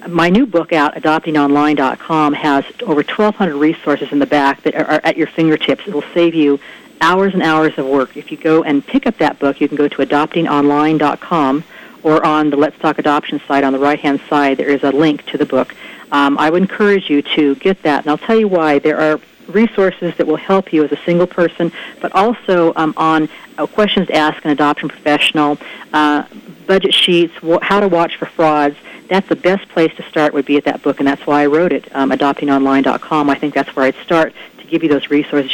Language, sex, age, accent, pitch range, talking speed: English, female, 50-69, American, 145-175 Hz, 220 wpm